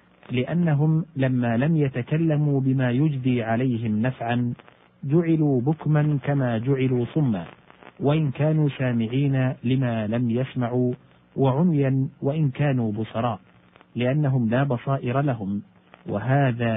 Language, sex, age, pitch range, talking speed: Arabic, male, 50-69, 115-140 Hz, 100 wpm